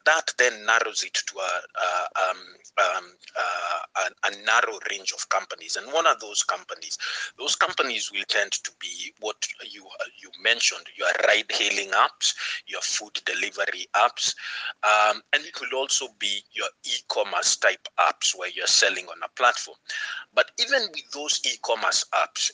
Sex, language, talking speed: male, English, 165 wpm